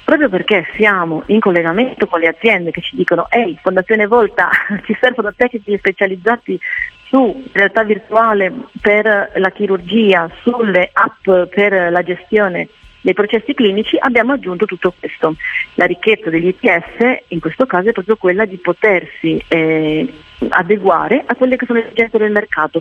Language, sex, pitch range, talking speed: Italian, female, 180-255 Hz, 155 wpm